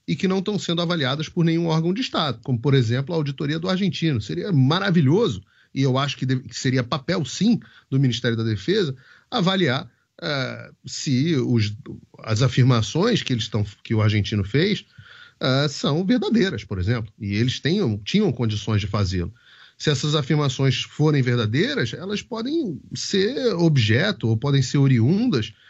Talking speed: 145 wpm